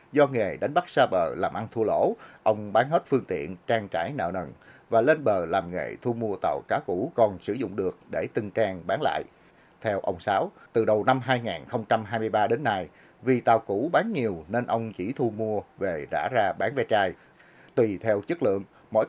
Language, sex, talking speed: Vietnamese, male, 215 wpm